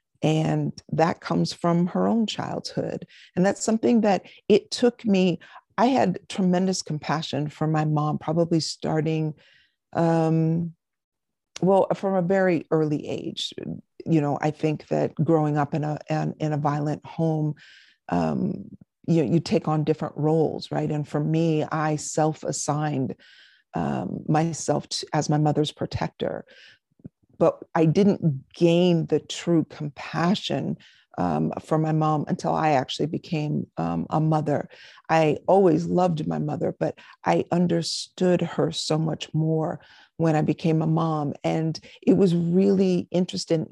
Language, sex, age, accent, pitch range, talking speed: English, female, 50-69, American, 150-175 Hz, 140 wpm